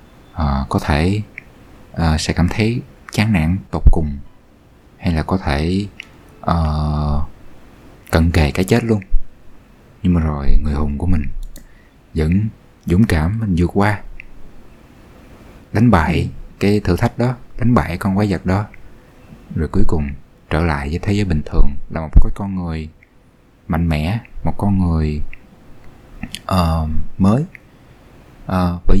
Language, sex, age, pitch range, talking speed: Vietnamese, male, 20-39, 80-100 Hz, 130 wpm